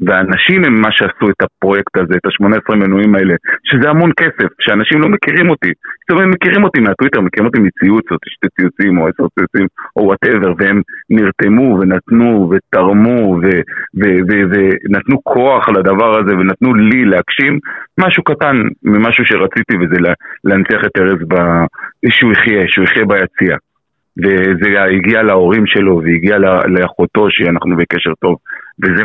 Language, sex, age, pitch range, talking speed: Hebrew, male, 40-59, 90-105 Hz, 145 wpm